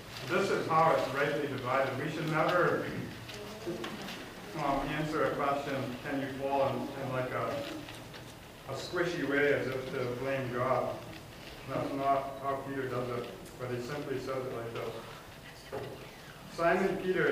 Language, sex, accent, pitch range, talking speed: English, male, American, 125-145 Hz, 150 wpm